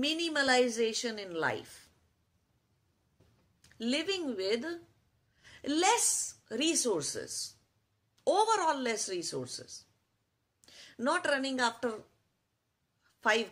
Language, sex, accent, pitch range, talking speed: English, female, Indian, 175-265 Hz, 60 wpm